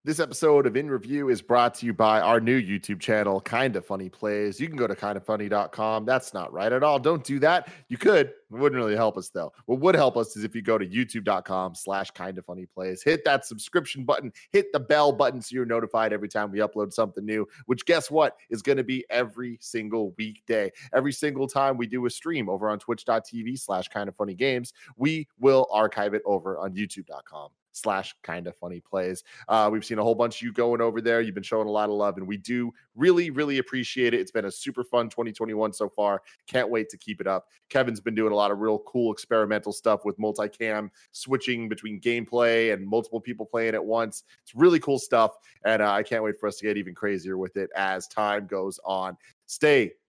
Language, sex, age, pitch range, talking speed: English, male, 30-49, 105-125 Hz, 220 wpm